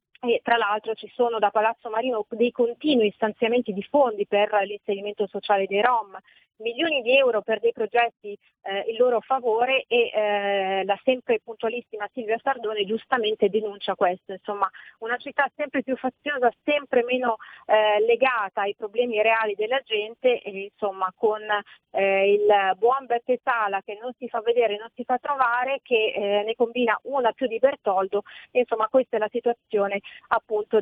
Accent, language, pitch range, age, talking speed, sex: native, Italian, 205-240 Hz, 30-49, 165 wpm, female